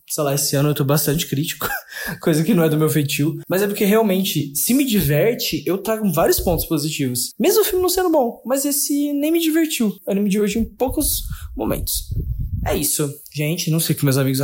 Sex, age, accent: male, 20-39, Brazilian